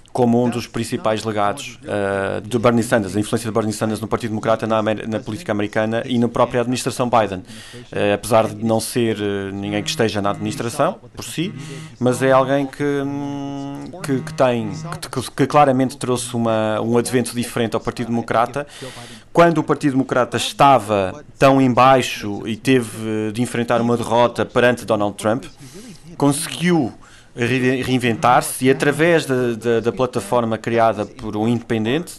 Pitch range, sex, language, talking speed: 115-140 Hz, male, Portuguese, 160 wpm